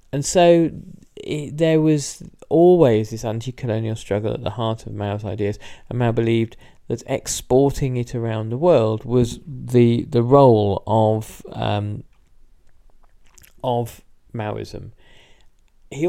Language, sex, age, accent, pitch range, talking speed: English, male, 40-59, British, 110-135 Hz, 125 wpm